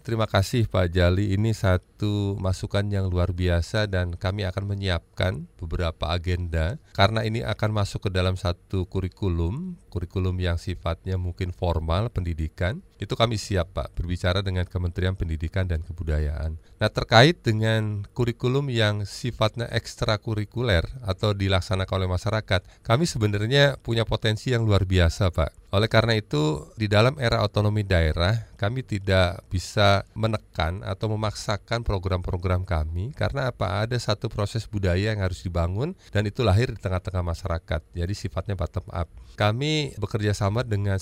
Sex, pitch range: male, 90-110 Hz